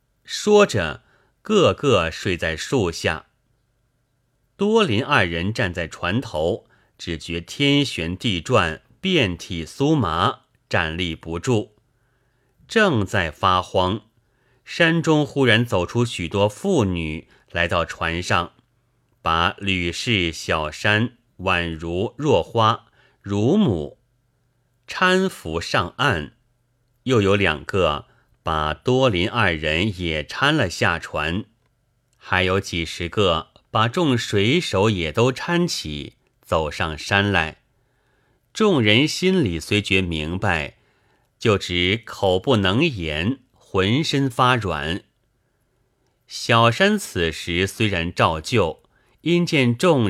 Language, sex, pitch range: Chinese, male, 85-125 Hz